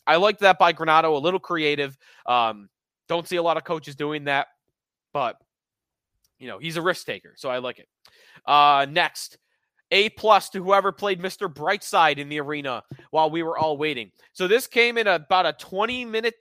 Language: English